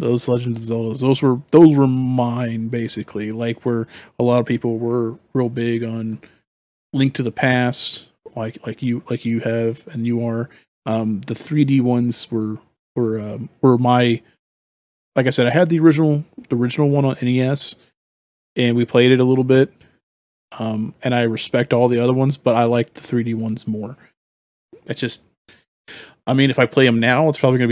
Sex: male